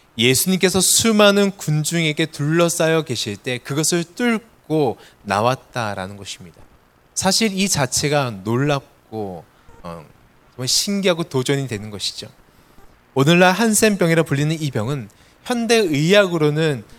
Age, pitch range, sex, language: 20-39, 120-180 Hz, male, Korean